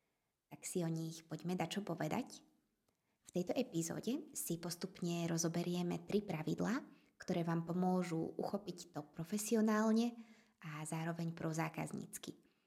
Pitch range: 165-195 Hz